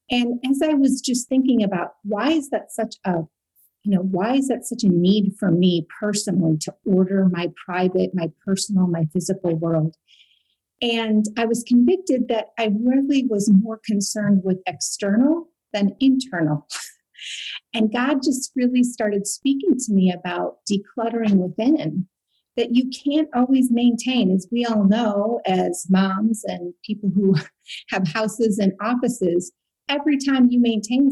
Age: 40-59